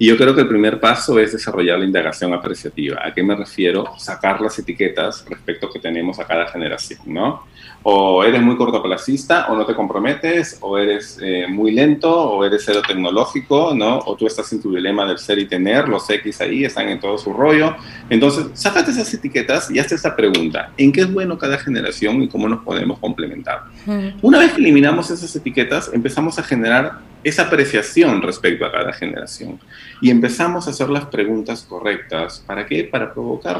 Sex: male